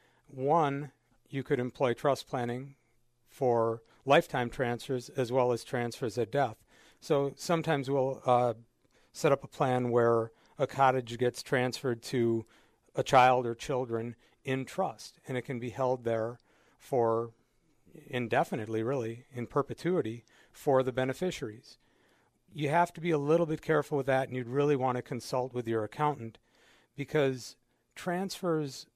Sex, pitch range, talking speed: male, 120-140 Hz, 145 wpm